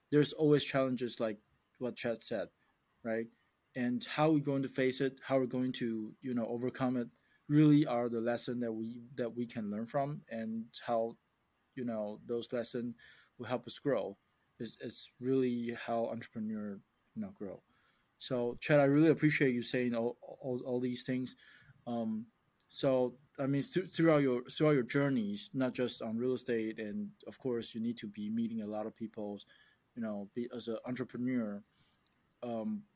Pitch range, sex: 115-135 Hz, male